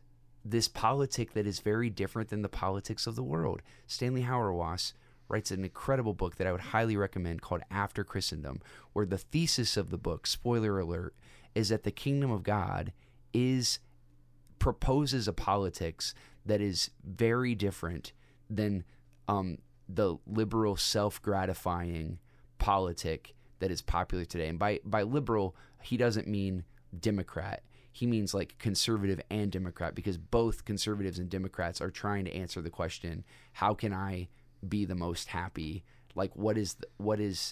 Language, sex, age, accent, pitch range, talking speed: English, male, 20-39, American, 85-115 Hz, 155 wpm